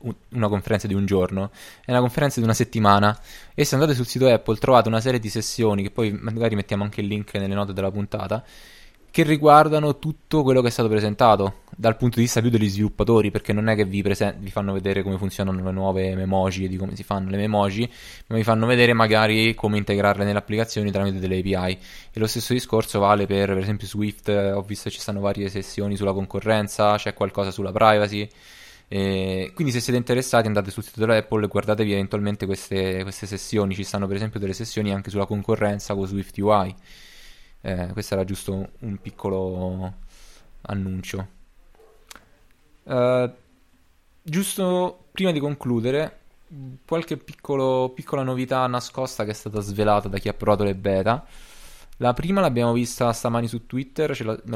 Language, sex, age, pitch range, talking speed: Italian, male, 20-39, 100-120 Hz, 180 wpm